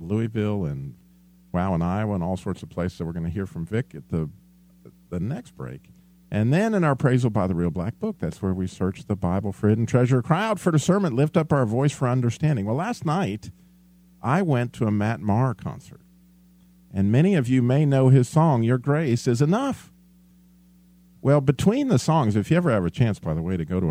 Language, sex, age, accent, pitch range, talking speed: English, male, 50-69, American, 100-160 Hz, 230 wpm